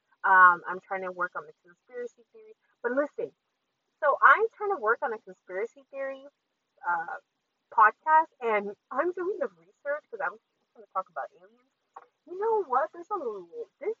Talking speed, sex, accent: 175 wpm, female, American